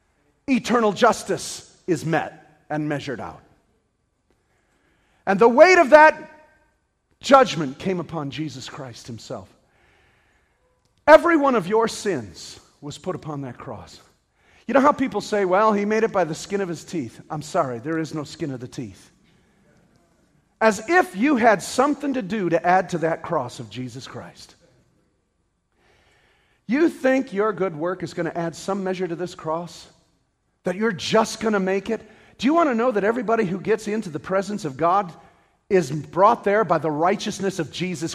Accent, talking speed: American, 175 wpm